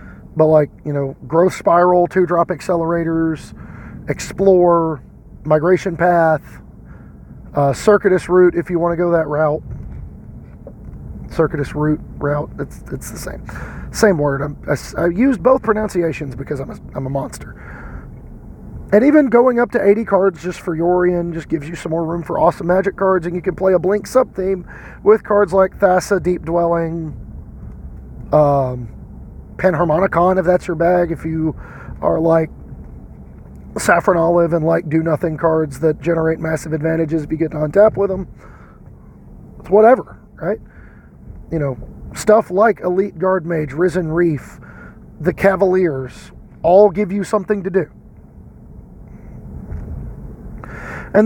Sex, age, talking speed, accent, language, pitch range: male, 40-59, 145 wpm, American, English, 155-190 Hz